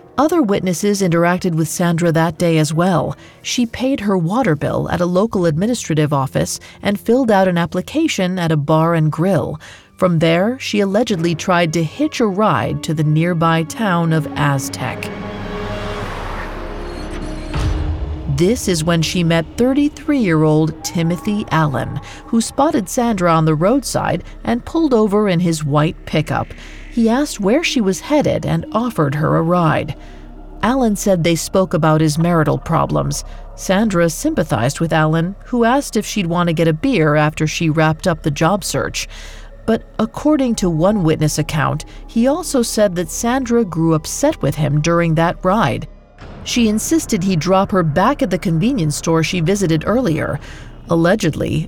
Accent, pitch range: American, 155-210 Hz